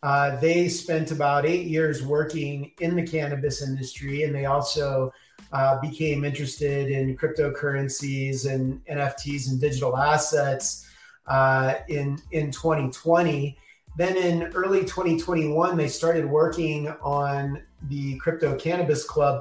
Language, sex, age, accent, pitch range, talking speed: English, male, 30-49, American, 140-160 Hz, 125 wpm